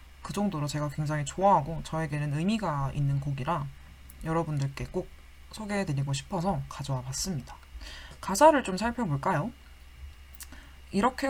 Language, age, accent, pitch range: Korean, 20-39, native, 135-200 Hz